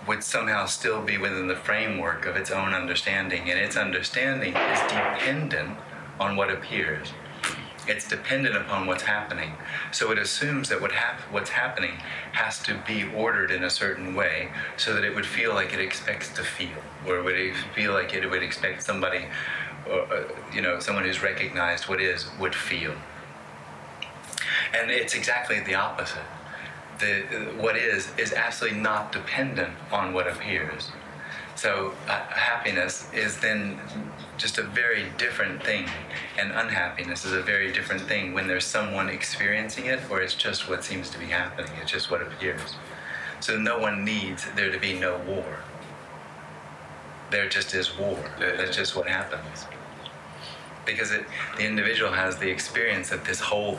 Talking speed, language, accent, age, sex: 160 wpm, Finnish, American, 30-49, male